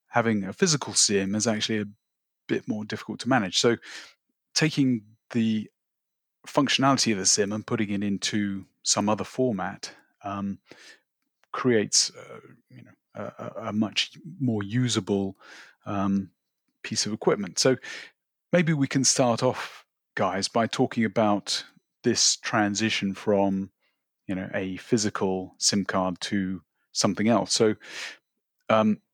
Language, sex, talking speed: English, male, 130 wpm